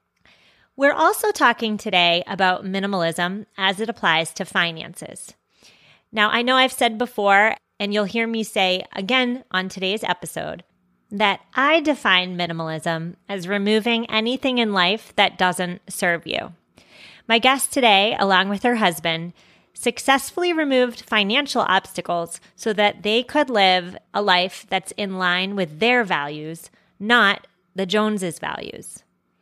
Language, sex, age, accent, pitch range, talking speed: English, female, 30-49, American, 185-245 Hz, 135 wpm